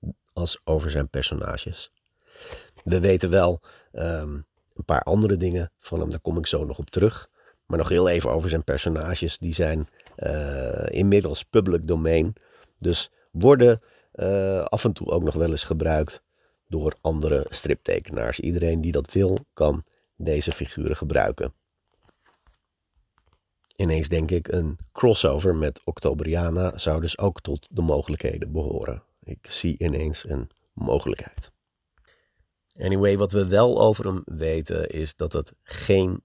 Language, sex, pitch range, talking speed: Dutch, male, 80-95 Hz, 140 wpm